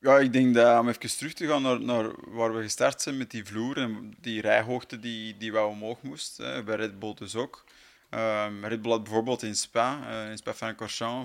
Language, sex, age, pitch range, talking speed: Dutch, male, 20-39, 110-125 Hz, 215 wpm